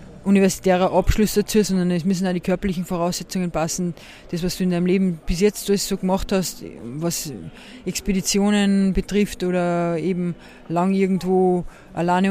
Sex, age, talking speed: female, 20-39, 150 wpm